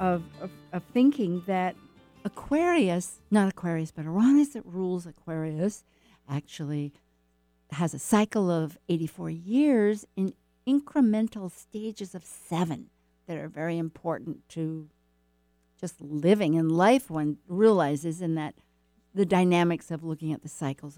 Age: 60-79